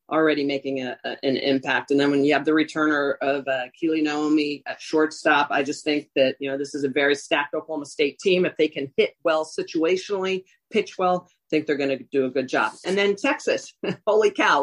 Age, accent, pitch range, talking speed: 40-59, American, 145-170 Hz, 215 wpm